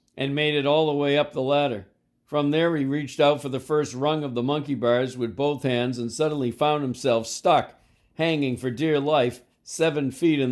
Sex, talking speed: male, 210 wpm